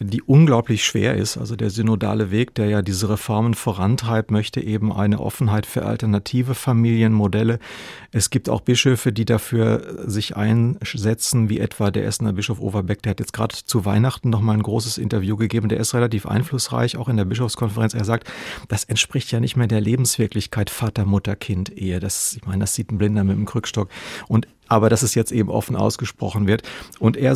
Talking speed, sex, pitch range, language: 180 wpm, male, 105-125 Hz, German